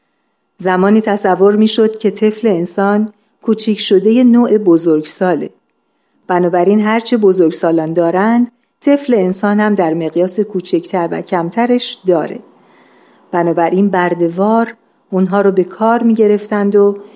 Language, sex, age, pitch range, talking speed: Persian, female, 50-69, 180-225 Hz, 120 wpm